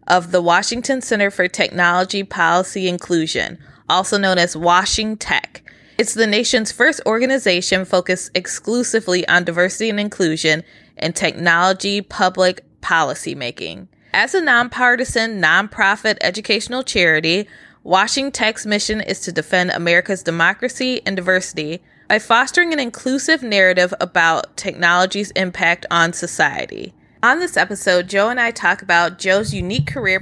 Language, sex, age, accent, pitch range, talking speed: English, female, 20-39, American, 175-215 Hz, 130 wpm